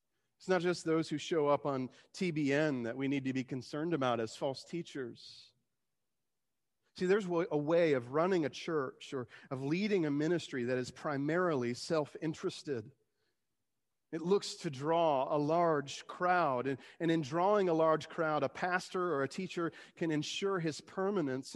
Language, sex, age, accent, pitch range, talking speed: English, male, 40-59, American, 155-195 Hz, 160 wpm